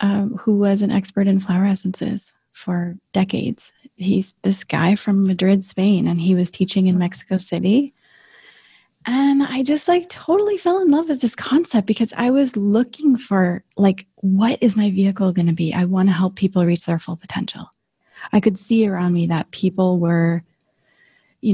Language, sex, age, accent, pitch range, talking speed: English, female, 20-39, American, 175-210 Hz, 180 wpm